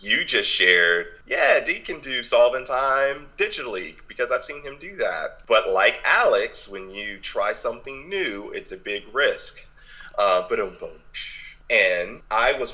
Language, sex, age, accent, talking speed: English, male, 30-49, American, 155 wpm